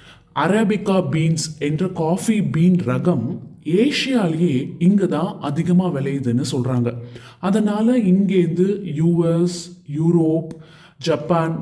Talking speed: 95 wpm